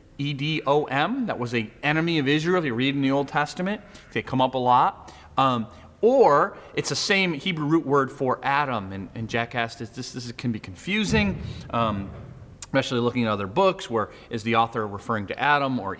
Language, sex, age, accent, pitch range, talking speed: English, male, 30-49, American, 115-150 Hz, 200 wpm